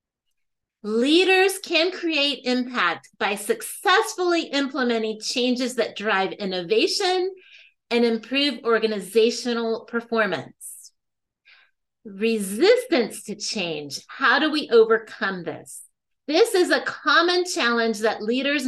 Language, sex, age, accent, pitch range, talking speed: English, female, 30-49, American, 220-315 Hz, 95 wpm